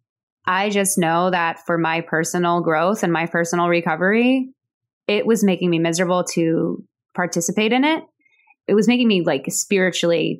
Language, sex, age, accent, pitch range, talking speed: English, female, 20-39, American, 160-190 Hz, 155 wpm